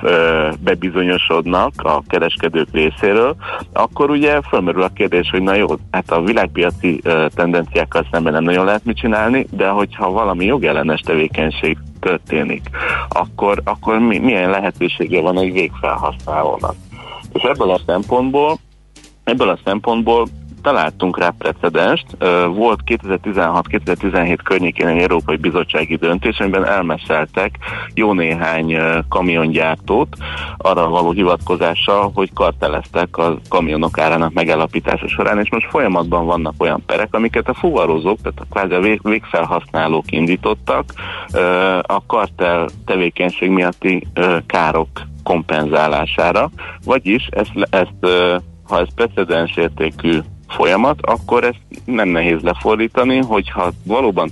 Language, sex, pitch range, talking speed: Hungarian, male, 80-100 Hz, 115 wpm